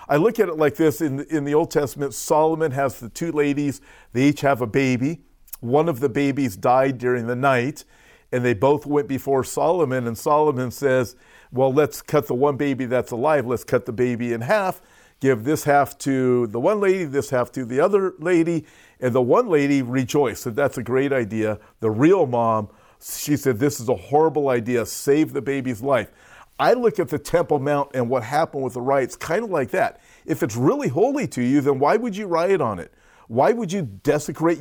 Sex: male